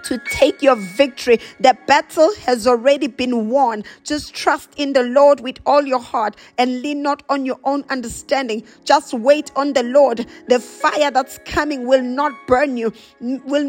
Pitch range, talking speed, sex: 265-320 Hz, 175 wpm, female